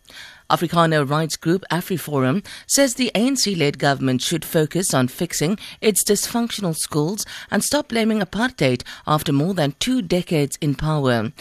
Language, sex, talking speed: English, female, 135 wpm